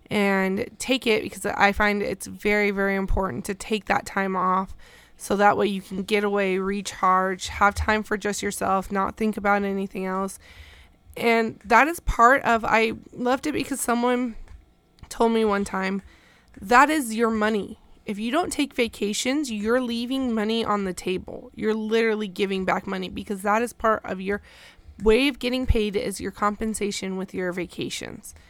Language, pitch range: English, 195-230 Hz